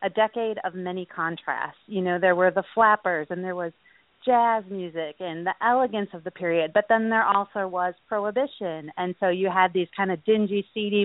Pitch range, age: 175-220 Hz, 40-59